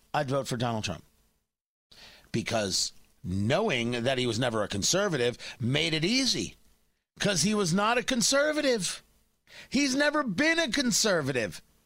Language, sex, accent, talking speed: English, male, American, 135 wpm